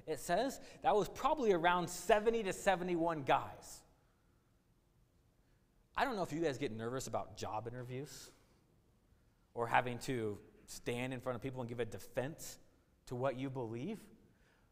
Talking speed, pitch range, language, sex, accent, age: 150 wpm, 125-205 Hz, English, male, American, 30-49